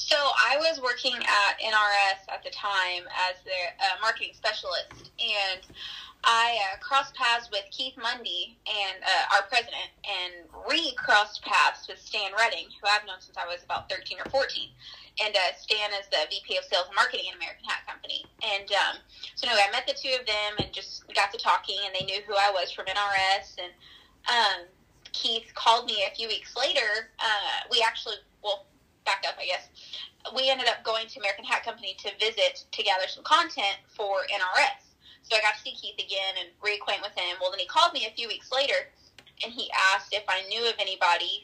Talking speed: 205 wpm